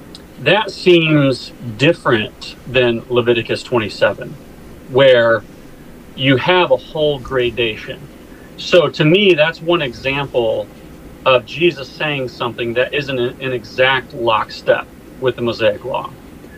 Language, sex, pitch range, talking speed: English, male, 120-145 Hz, 110 wpm